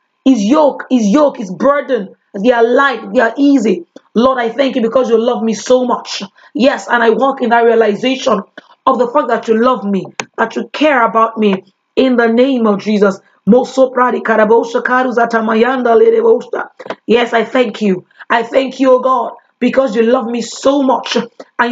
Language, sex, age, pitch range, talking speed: English, female, 30-49, 225-260 Hz, 170 wpm